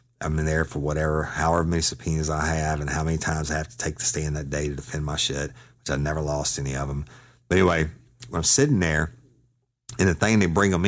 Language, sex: English, male